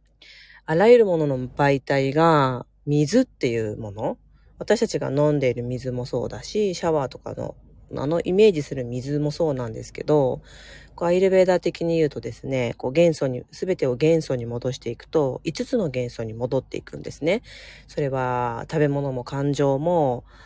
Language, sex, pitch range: Japanese, female, 125-170 Hz